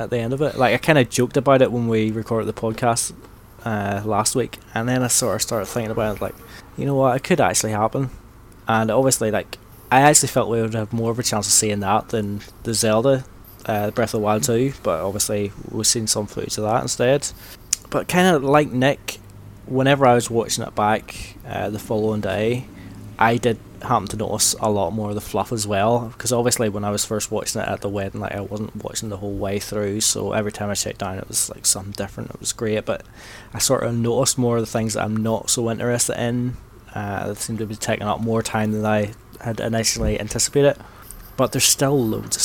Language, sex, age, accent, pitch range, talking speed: English, male, 20-39, British, 105-120 Hz, 235 wpm